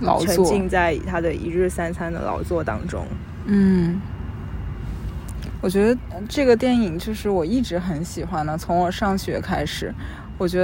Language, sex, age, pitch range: Chinese, female, 20-39, 170-200 Hz